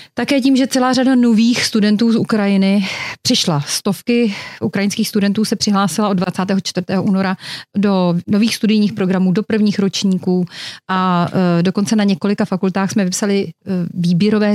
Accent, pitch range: native, 185-210 Hz